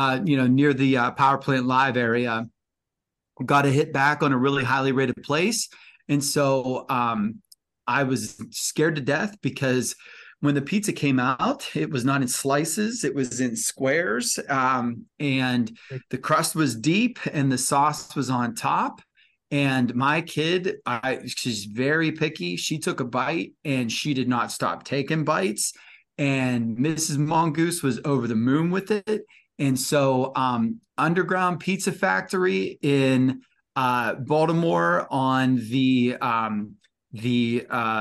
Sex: male